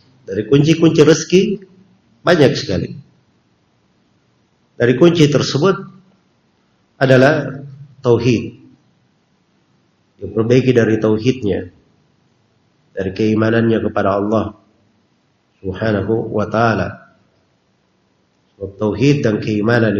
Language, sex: Indonesian, male